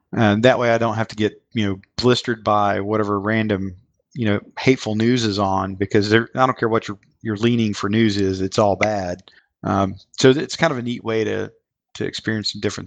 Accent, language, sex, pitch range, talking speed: American, English, male, 105-120 Hz, 230 wpm